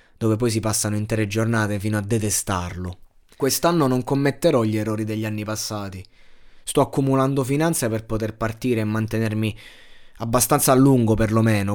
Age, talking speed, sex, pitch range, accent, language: 20-39, 150 wpm, male, 105-130 Hz, native, Italian